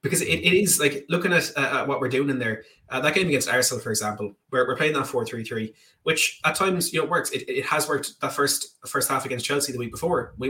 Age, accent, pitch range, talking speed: 20-39, Irish, 125-140 Hz, 280 wpm